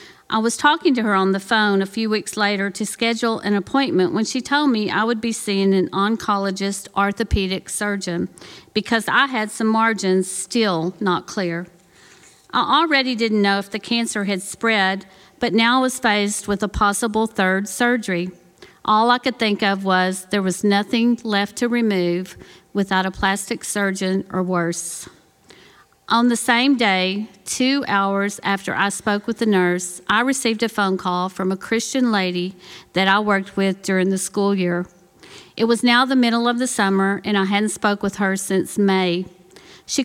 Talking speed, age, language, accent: 180 wpm, 40-59, English, American